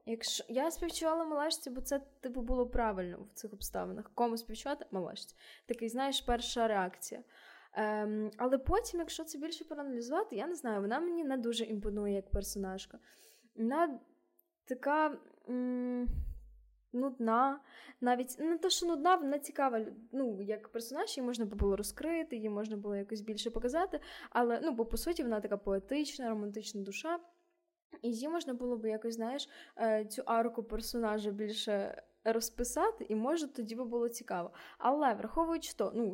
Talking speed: 155 wpm